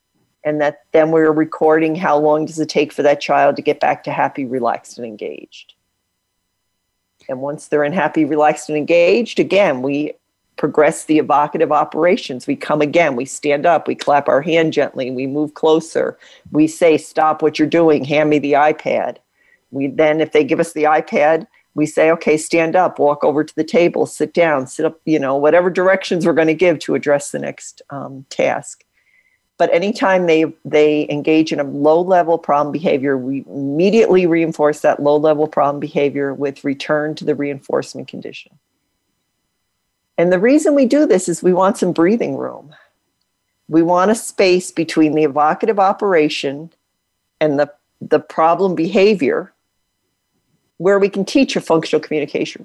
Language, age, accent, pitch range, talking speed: English, 50-69, American, 145-170 Hz, 170 wpm